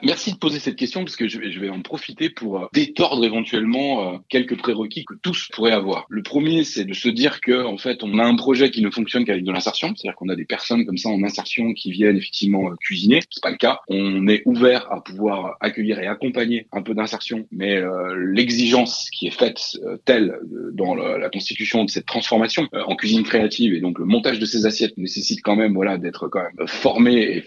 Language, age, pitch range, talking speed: French, 30-49, 100-120 Hz, 215 wpm